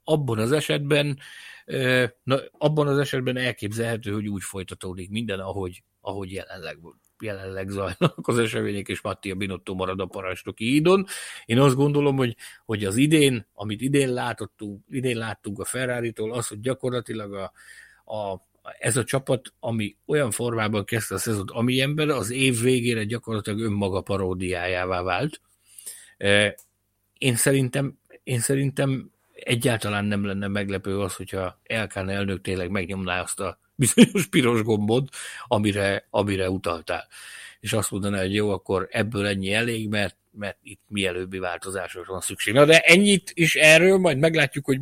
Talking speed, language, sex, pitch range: 145 wpm, Hungarian, male, 100-135 Hz